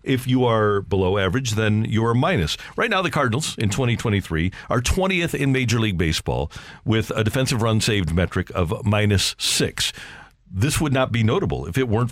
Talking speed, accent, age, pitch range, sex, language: 190 wpm, American, 50-69, 105-135 Hz, male, English